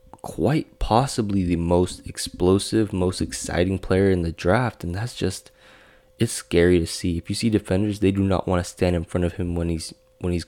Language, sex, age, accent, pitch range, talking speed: English, male, 20-39, American, 85-115 Hz, 205 wpm